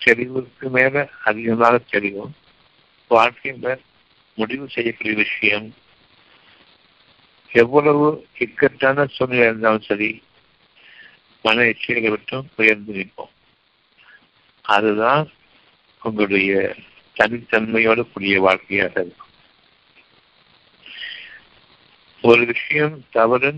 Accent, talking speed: native, 70 wpm